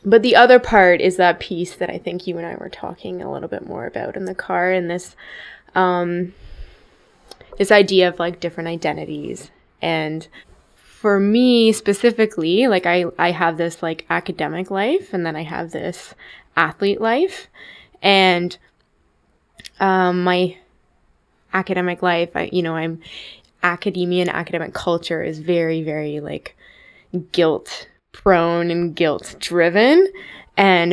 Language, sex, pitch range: English, female, 165-195 Hz